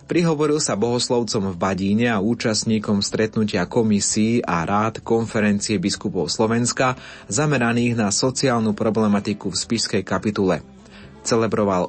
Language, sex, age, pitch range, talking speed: Slovak, male, 30-49, 105-125 Hz, 110 wpm